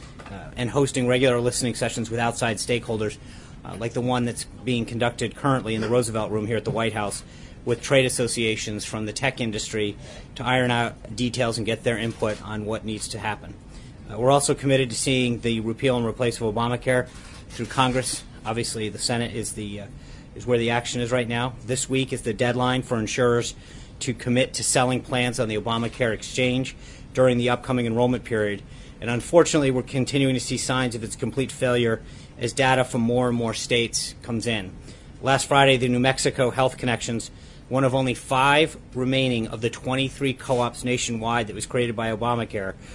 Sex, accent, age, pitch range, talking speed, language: male, American, 40-59, 115-130 Hz, 190 wpm, English